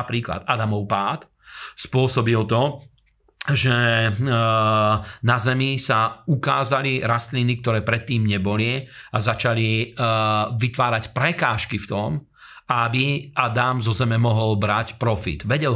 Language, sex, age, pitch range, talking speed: Slovak, male, 40-59, 110-125 Hz, 105 wpm